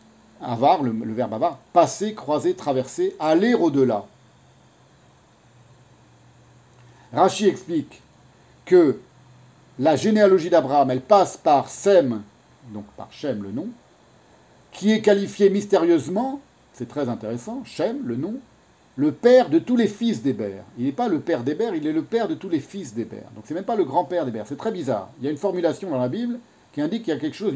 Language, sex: French, male